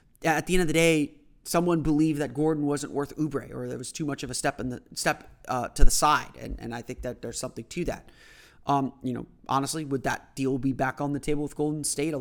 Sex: male